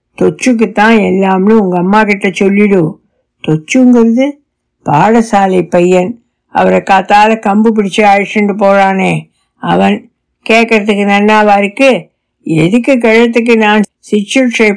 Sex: female